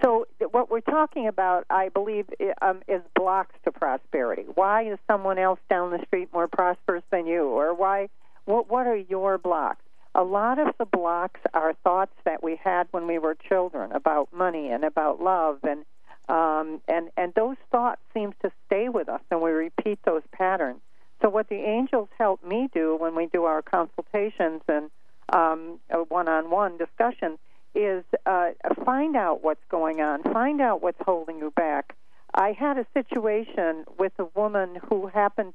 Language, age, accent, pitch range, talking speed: English, 50-69, American, 170-230 Hz, 175 wpm